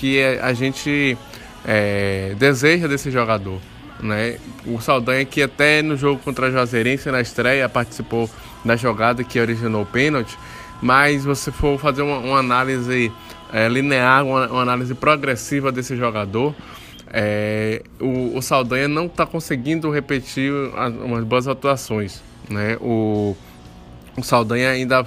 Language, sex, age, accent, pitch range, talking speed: Portuguese, male, 20-39, Brazilian, 115-140 Hz, 135 wpm